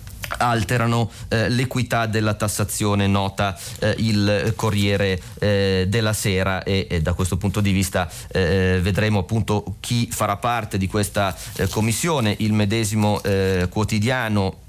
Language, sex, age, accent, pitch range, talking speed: Italian, male, 30-49, native, 90-110 Hz, 135 wpm